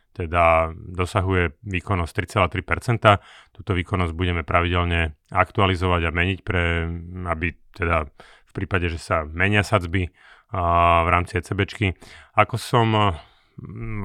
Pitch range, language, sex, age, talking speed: 85-100 Hz, Slovak, male, 30-49, 115 wpm